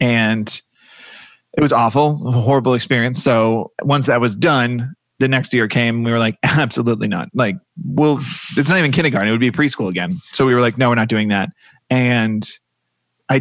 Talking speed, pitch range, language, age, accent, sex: 195 wpm, 105-130 Hz, English, 20-39, American, male